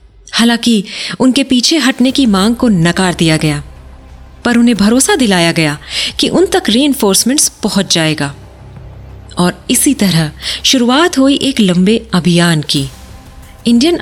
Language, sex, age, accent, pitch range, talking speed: Hindi, female, 30-49, native, 170-235 Hz, 135 wpm